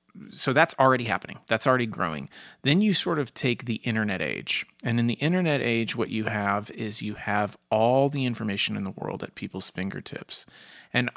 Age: 30-49